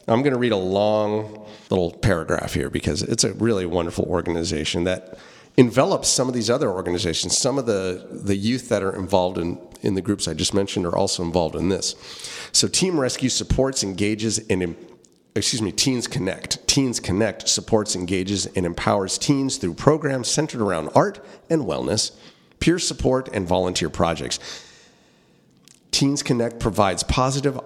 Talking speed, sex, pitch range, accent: 165 wpm, male, 90-120 Hz, American